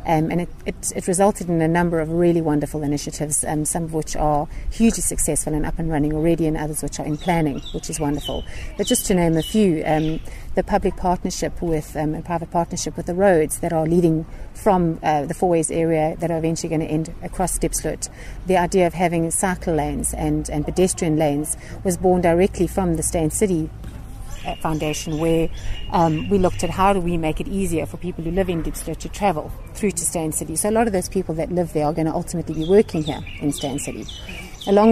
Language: English